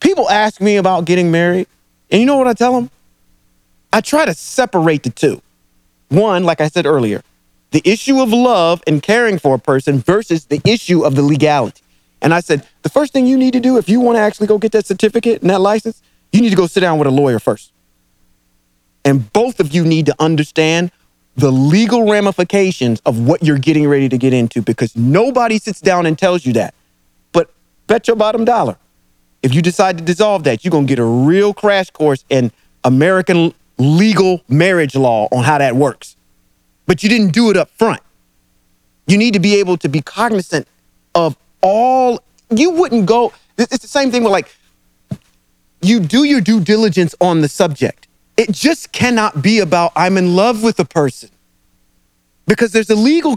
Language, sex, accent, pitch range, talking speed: English, male, American, 150-220 Hz, 195 wpm